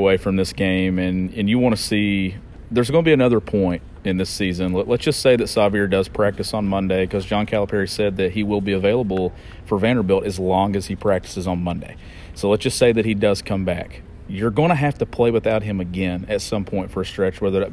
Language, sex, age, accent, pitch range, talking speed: English, male, 40-59, American, 95-120 Hz, 245 wpm